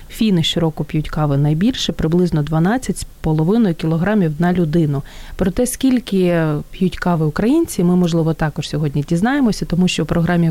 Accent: native